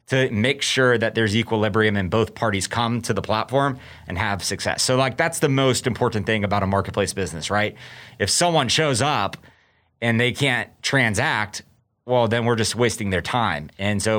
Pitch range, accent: 100-125 Hz, American